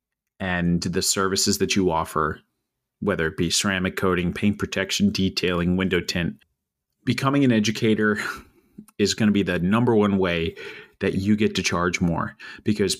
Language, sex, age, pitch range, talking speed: English, male, 30-49, 95-110 Hz, 155 wpm